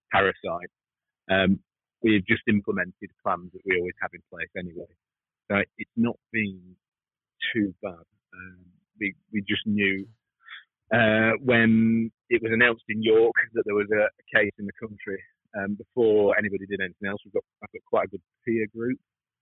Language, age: English, 30-49